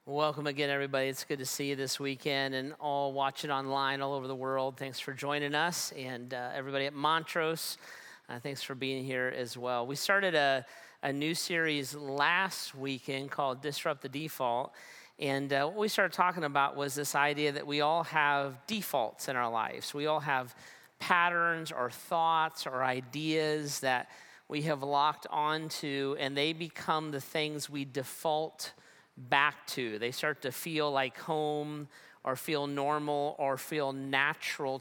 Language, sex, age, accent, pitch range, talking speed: English, male, 40-59, American, 135-160 Hz, 170 wpm